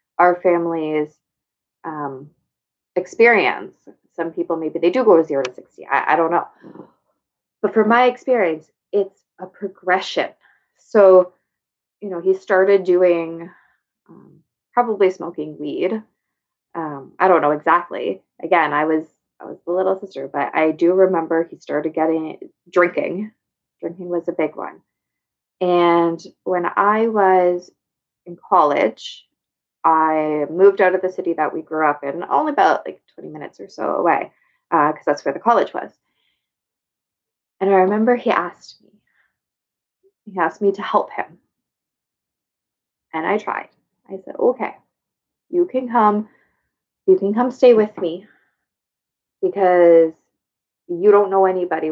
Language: English